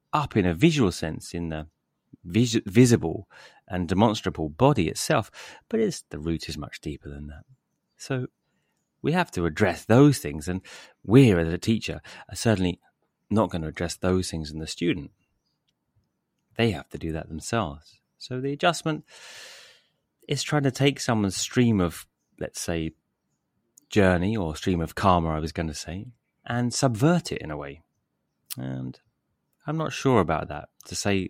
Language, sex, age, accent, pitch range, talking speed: English, male, 30-49, British, 80-125 Hz, 165 wpm